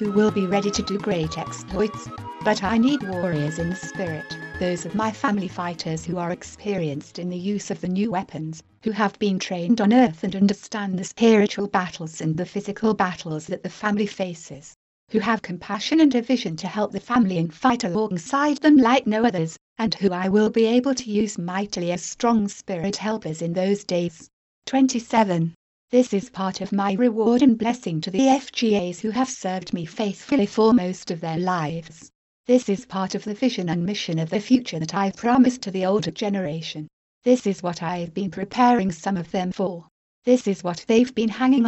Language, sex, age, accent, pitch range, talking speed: English, female, 60-79, British, 175-220 Hz, 200 wpm